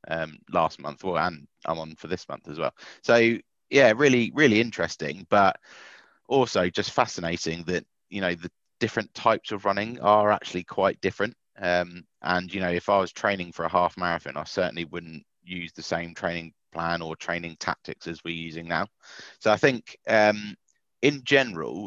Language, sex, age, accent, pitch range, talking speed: English, male, 30-49, British, 85-100 Hz, 180 wpm